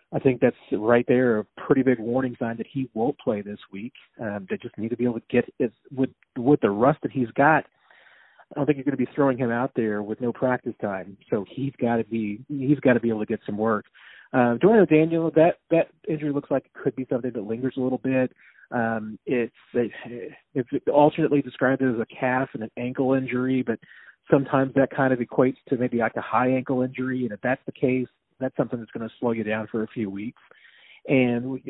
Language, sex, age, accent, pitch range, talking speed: English, male, 40-59, American, 120-145 Hz, 235 wpm